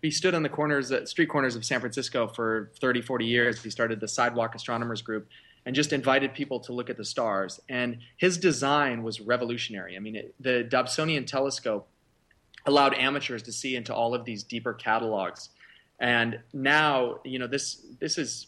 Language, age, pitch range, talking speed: English, 30-49, 110-135 Hz, 190 wpm